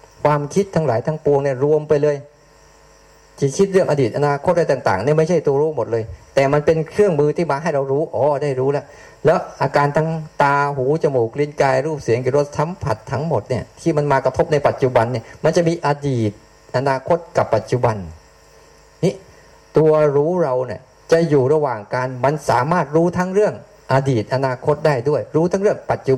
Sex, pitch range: male, 130-160 Hz